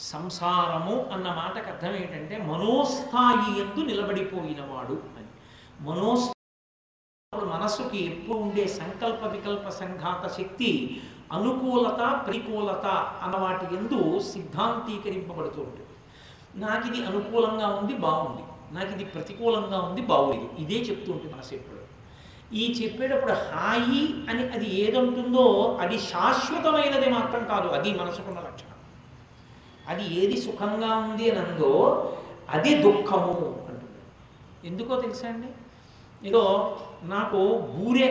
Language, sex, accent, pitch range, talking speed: Telugu, male, native, 185-240 Hz, 105 wpm